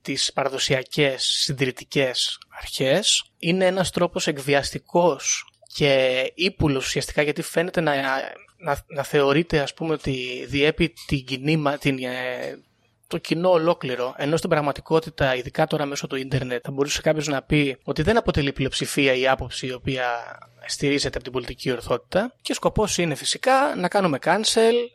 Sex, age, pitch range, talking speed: male, 20-39, 140-180 Hz, 140 wpm